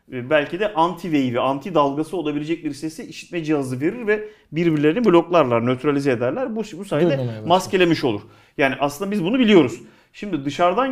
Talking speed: 150 wpm